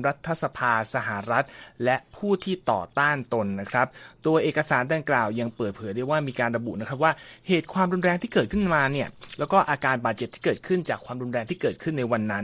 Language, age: Thai, 30-49